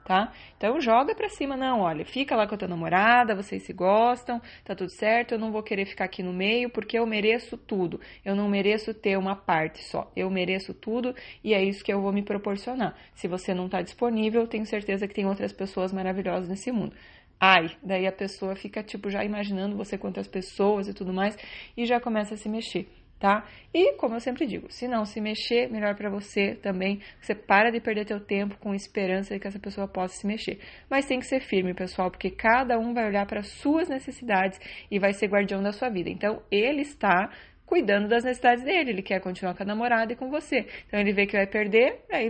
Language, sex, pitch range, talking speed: Portuguese, female, 195-240 Hz, 220 wpm